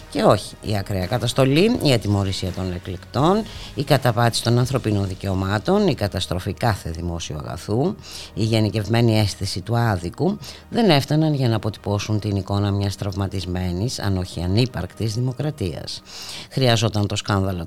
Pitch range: 90-120 Hz